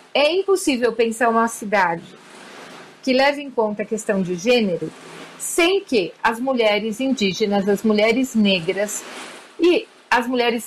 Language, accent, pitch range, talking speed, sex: Portuguese, Brazilian, 215-265 Hz, 135 wpm, female